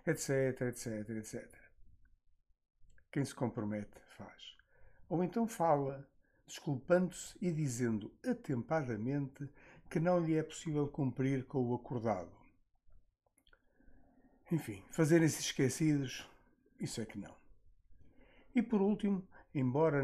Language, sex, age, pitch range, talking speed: Portuguese, male, 60-79, 115-160 Hz, 100 wpm